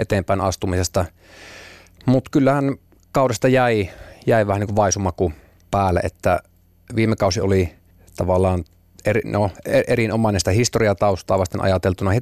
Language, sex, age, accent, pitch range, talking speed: Finnish, male, 30-49, native, 90-105 Hz, 120 wpm